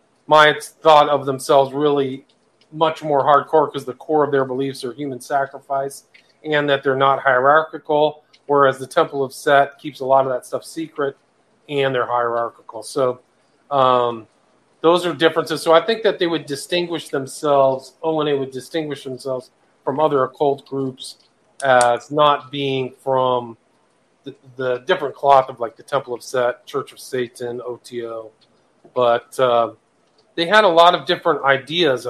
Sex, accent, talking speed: male, American, 165 wpm